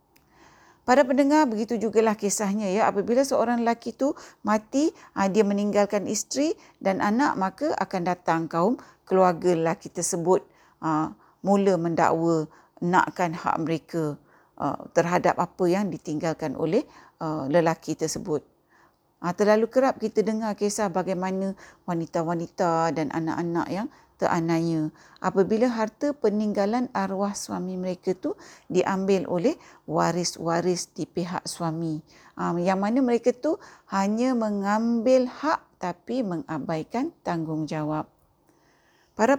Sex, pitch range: female, 175-235 Hz